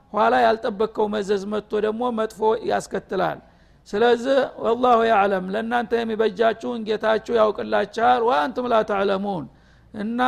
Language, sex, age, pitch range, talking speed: Amharic, male, 50-69, 210-235 Hz, 105 wpm